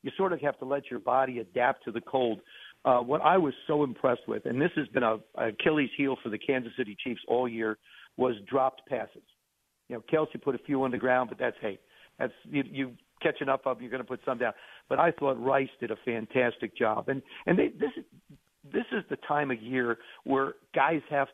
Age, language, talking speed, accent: 60-79, English, 230 wpm, American